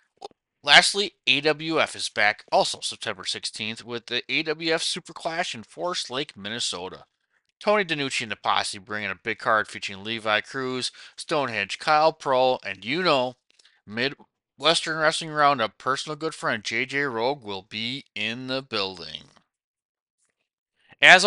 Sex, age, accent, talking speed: male, 20-39, American, 135 wpm